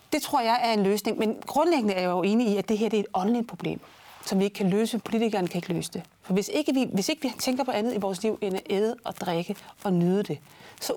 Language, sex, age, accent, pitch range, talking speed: Danish, female, 30-49, native, 195-235 Hz, 285 wpm